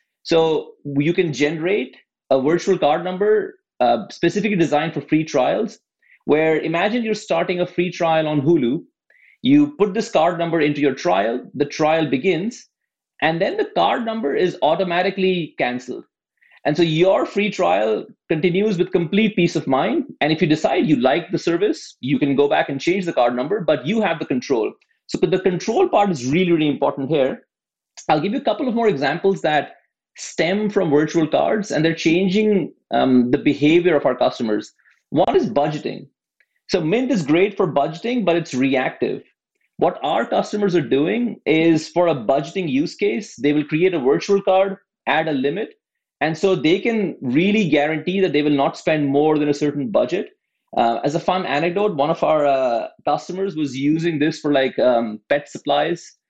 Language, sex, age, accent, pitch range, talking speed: English, male, 30-49, Indian, 145-195 Hz, 185 wpm